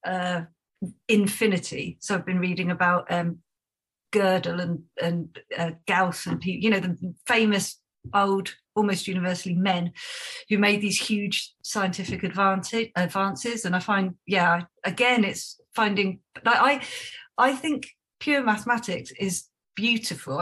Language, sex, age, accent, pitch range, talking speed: English, female, 40-59, British, 180-225 Hz, 125 wpm